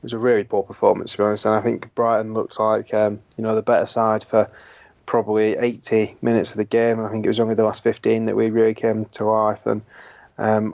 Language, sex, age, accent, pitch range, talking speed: English, male, 20-39, British, 105-115 Hz, 250 wpm